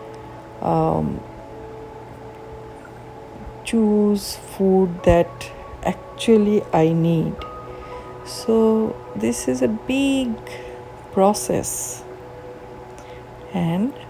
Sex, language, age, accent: female, Bengali, 50-69, native